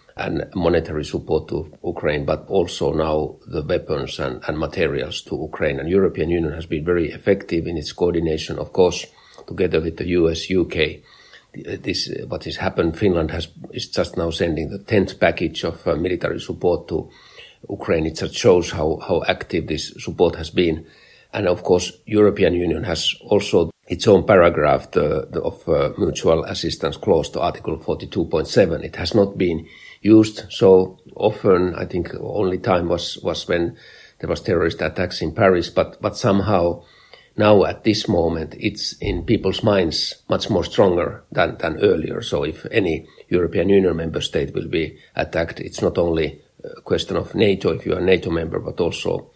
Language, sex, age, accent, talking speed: English, male, 50-69, Finnish, 170 wpm